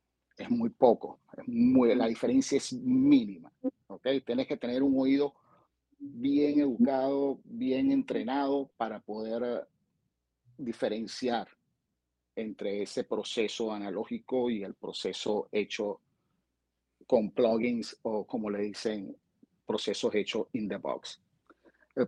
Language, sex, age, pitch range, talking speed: Spanish, male, 50-69, 115-155 Hz, 115 wpm